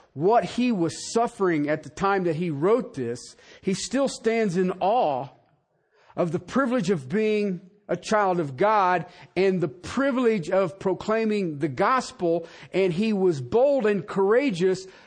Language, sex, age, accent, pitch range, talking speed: English, male, 50-69, American, 175-245 Hz, 150 wpm